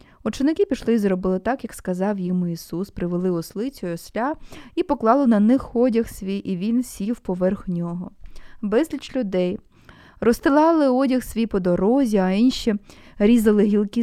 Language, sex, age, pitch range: Ukrainian, female, 20-39, 185-235 Hz